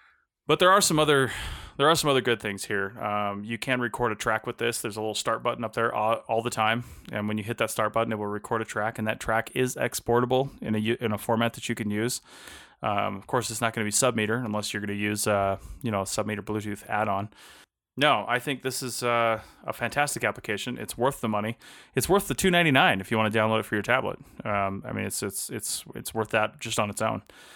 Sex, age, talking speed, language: male, 20-39, 255 wpm, English